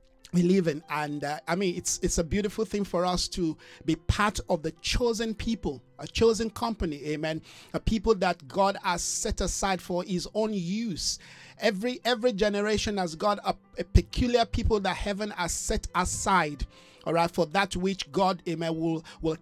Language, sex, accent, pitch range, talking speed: English, male, Nigerian, 170-215 Hz, 180 wpm